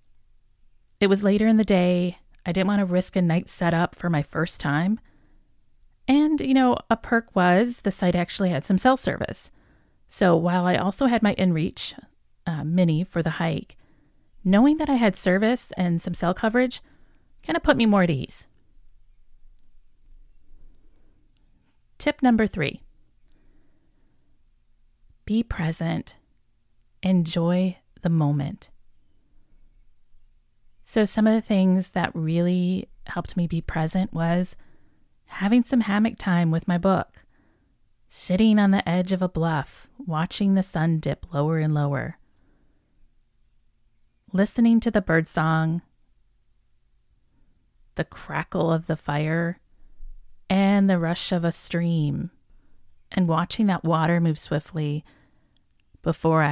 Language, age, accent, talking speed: English, 30-49, American, 130 wpm